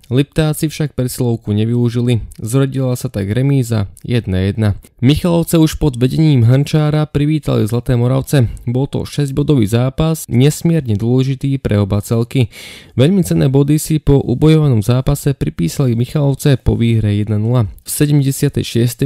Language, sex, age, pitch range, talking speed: Slovak, male, 20-39, 115-145 Hz, 125 wpm